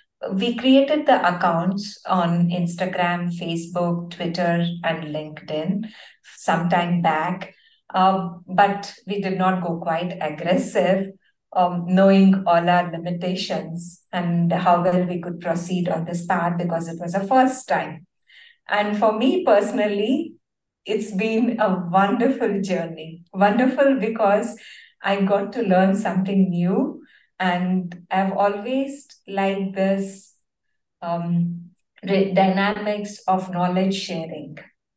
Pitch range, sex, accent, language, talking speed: 175-215 Hz, female, Indian, English, 115 wpm